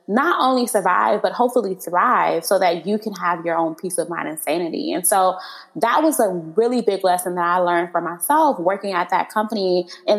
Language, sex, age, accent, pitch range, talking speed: English, female, 20-39, American, 180-215 Hz, 210 wpm